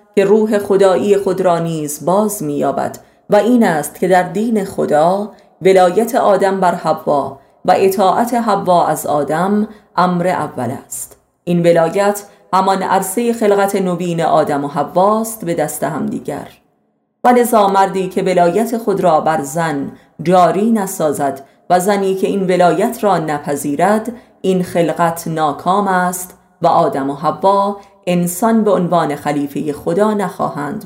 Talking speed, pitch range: 140 wpm, 165-205 Hz